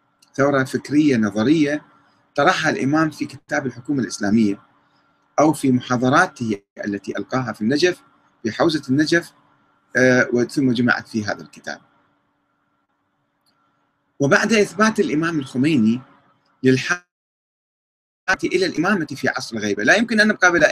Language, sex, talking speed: Arabic, male, 115 wpm